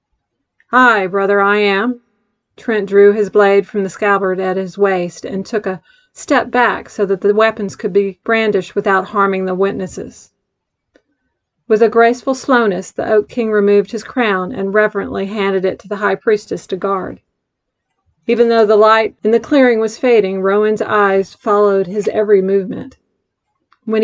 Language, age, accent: English, 40-59, American